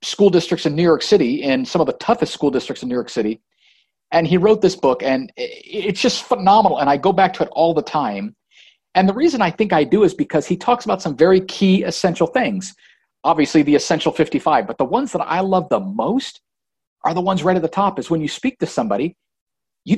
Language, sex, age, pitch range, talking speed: English, male, 50-69, 150-190 Hz, 235 wpm